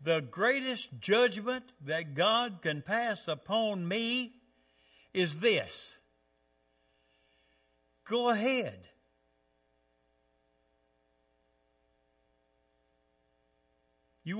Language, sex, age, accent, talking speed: English, male, 60-79, American, 60 wpm